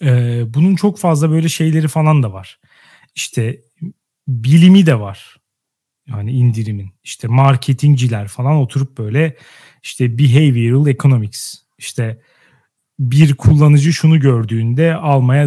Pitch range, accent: 125-165 Hz, native